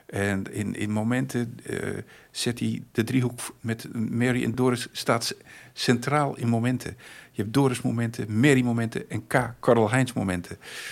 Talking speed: 145 wpm